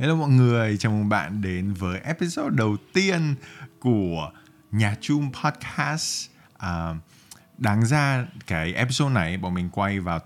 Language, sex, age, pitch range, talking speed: Vietnamese, male, 20-39, 85-125 Hz, 145 wpm